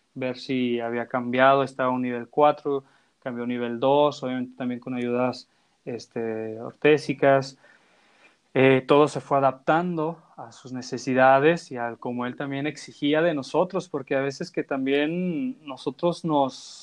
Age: 20-39